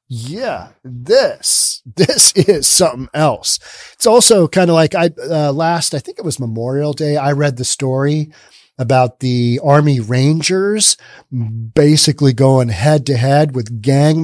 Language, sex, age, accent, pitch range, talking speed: English, male, 40-59, American, 130-160 Hz, 150 wpm